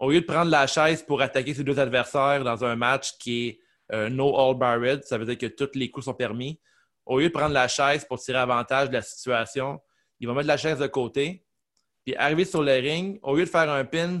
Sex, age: male, 30-49